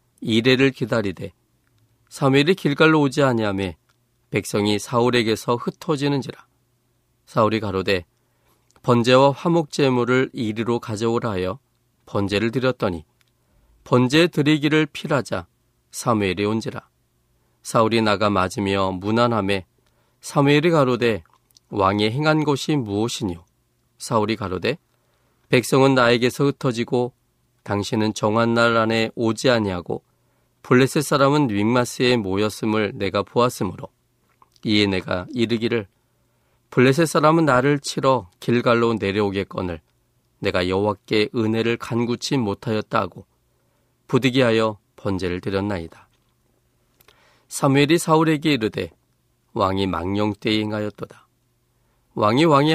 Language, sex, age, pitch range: Korean, male, 40-59, 105-130 Hz